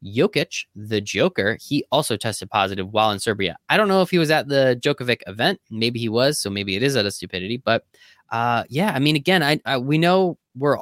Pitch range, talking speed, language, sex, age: 120-160 Hz, 225 wpm, English, male, 20-39